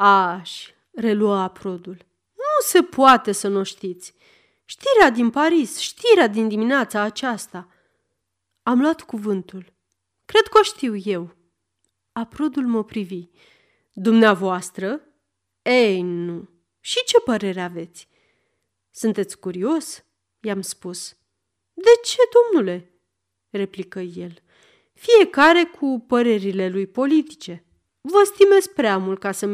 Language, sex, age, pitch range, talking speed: Romanian, female, 30-49, 190-270 Hz, 110 wpm